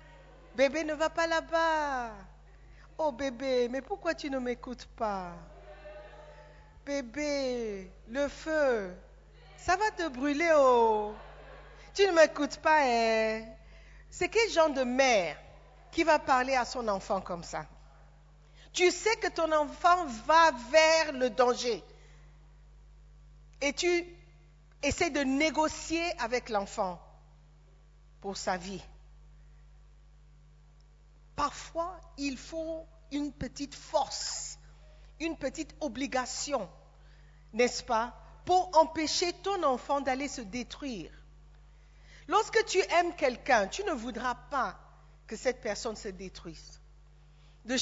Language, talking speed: French, 120 wpm